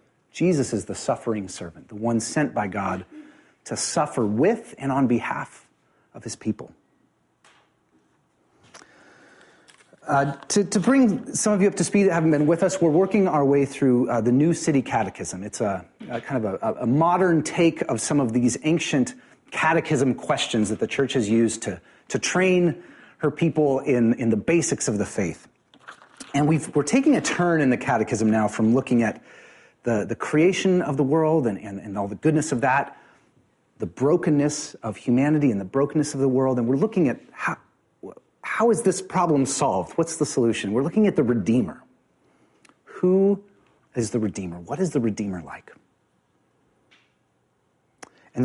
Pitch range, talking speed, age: 115-165 Hz, 175 wpm, 30-49